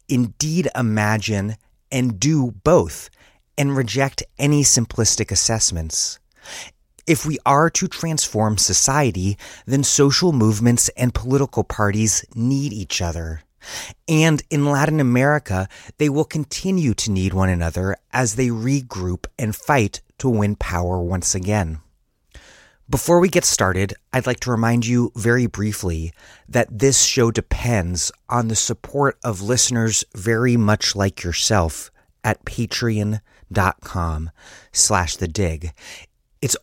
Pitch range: 95-130 Hz